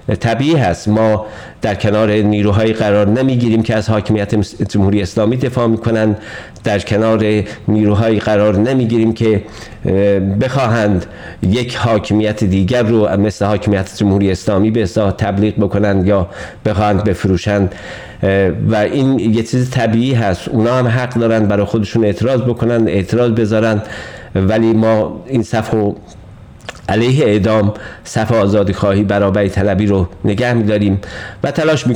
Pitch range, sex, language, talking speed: 100-115 Hz, male, Persian, 140 wpm